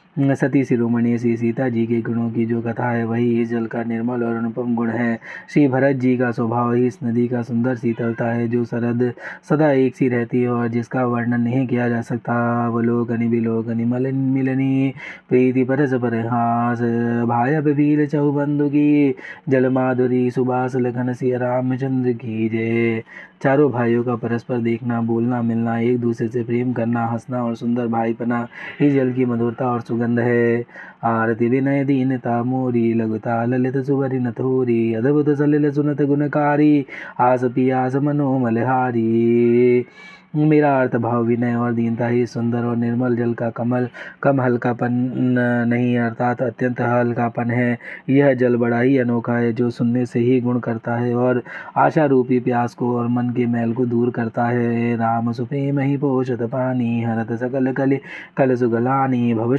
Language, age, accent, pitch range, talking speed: Hindi, 20-39, native, 120-130 Hz, 155 wpm